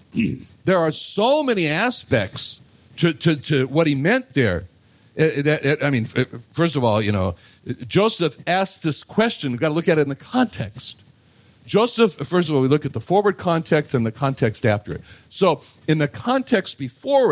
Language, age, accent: English, 60-79, American